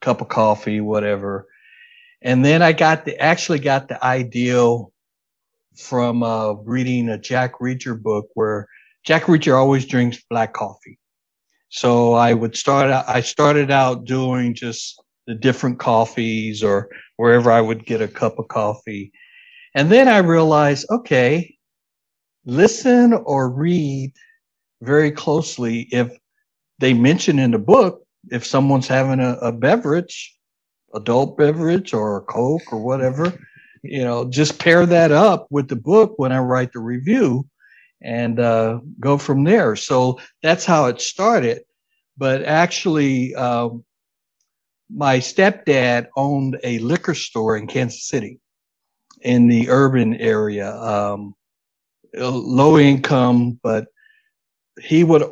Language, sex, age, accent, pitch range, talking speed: English, male, 60-79, American, 120-155 Hz, 135 wpm